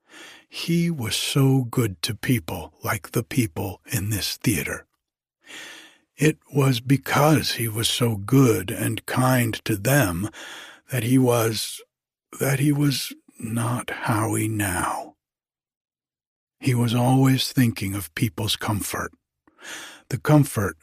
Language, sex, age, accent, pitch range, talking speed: English, male, 60-79, American, 110-140 Hz, 120 wpm